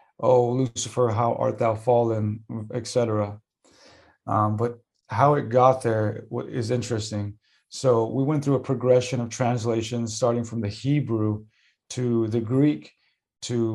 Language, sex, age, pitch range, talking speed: English, male, 30-49, 110-125 Hz, 140 wpm